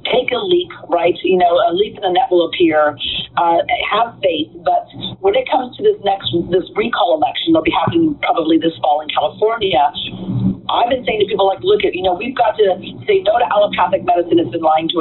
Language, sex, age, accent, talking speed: English, female, 50-69, American, 230 wpm